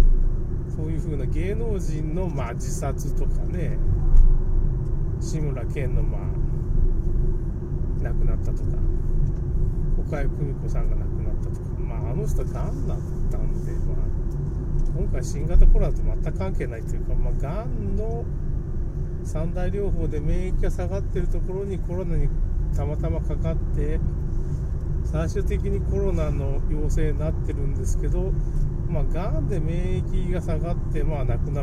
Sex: male